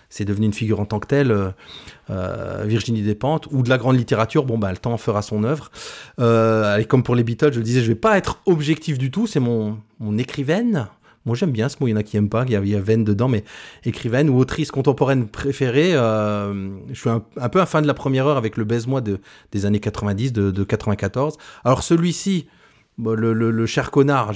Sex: male